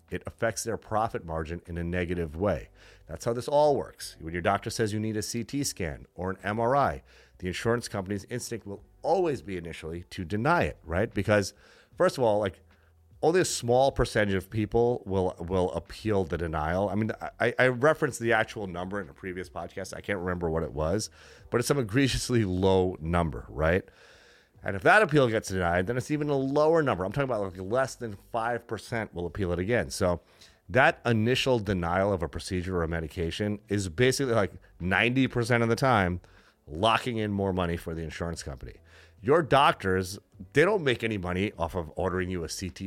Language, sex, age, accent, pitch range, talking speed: English, male, 30-49, American, 85-115 Hz, 195 wpm